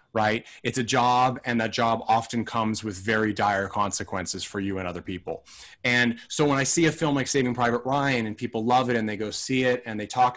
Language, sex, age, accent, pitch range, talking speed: English, male, 30-49, American, 110-135 Hz, 235 wpm